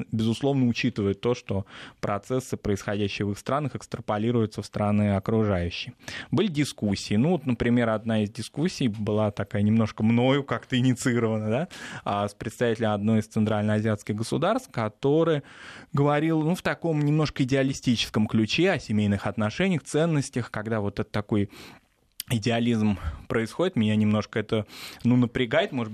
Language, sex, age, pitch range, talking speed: Russian, male, 20-39, 105-130 Hz, 135 wpm